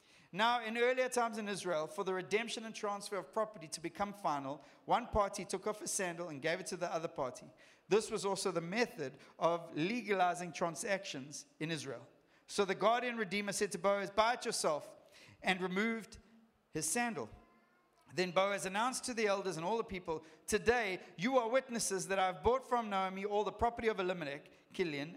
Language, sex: English, male